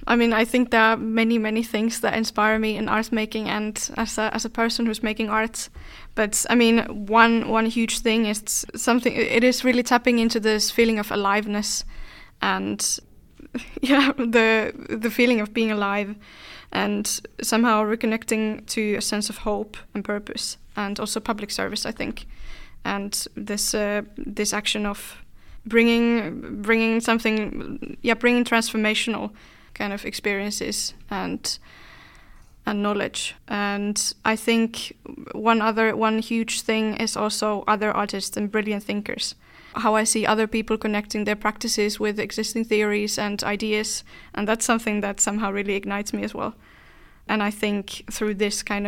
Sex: female